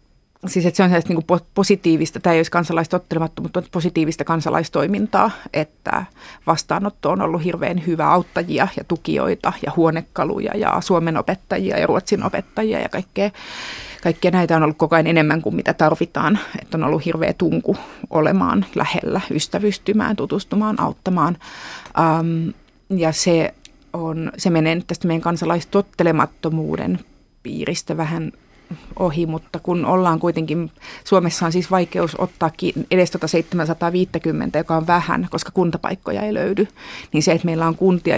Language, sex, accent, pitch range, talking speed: Finnish, female, native, 160-185 Hz, 140 wpm